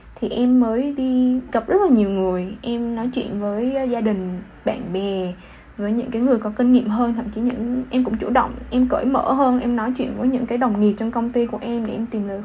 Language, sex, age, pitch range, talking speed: Vietnamese, female, 10-29, 215-255 Hz, 255 wpm